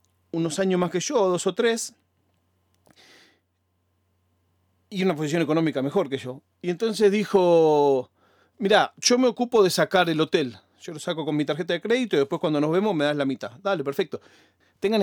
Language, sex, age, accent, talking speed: Spanish, male, 40-59, Argentinian, 185 wpm